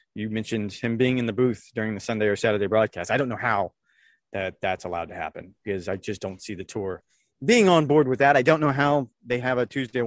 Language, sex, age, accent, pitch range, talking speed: English, male, 30-49, American, 110-145 Hz, 255 wpm